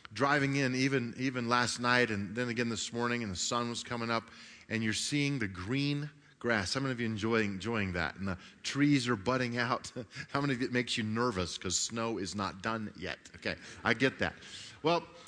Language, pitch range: English, 115-160 Hz